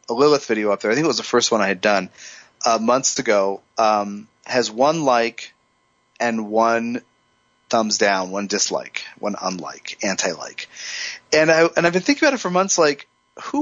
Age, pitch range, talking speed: 30-49, 105-155 Hz, 190 wpm